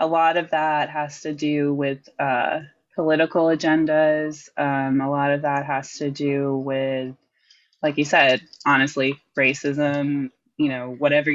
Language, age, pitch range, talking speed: English, 20-39, 140-165 Hz, 150 wpm